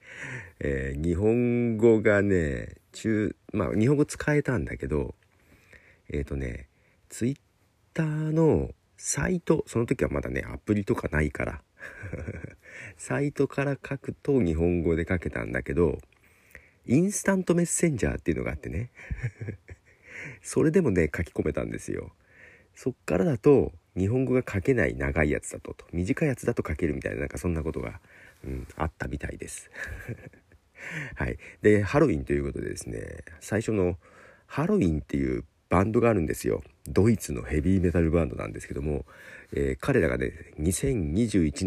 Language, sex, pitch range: Japanese, male, 80-125 Hz